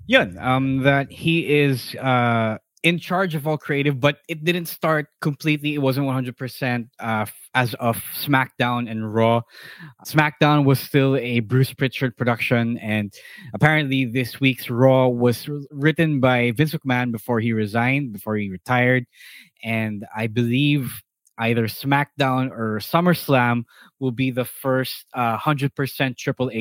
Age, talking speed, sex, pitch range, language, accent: 20-39, 140 wpm, male, 115-145 Hz, English, Filipino